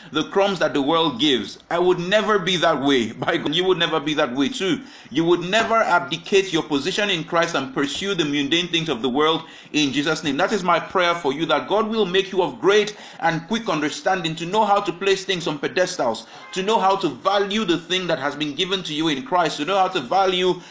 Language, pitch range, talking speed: English, 160-205 Hz, 245 wpm